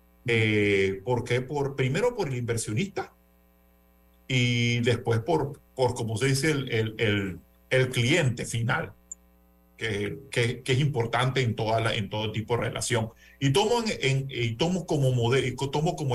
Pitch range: 105-150 Hz